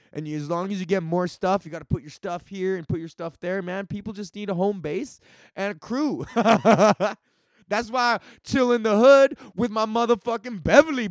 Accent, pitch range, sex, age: American, 165-230 Hz, male, 20-39